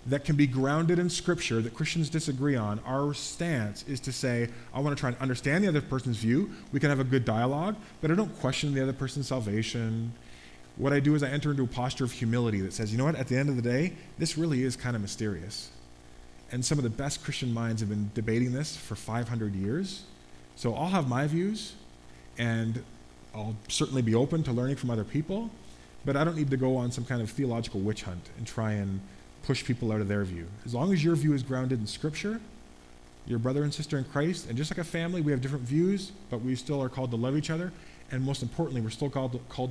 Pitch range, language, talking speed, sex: 105-145 Hz, English, 235 wpm, male